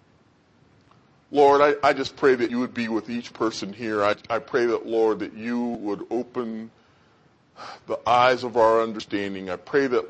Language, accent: English, American